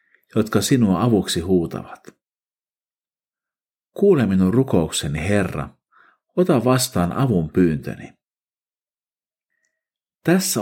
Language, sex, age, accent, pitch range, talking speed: Finnish, male, 50-69, native, 90-140 Hz, 75 wpm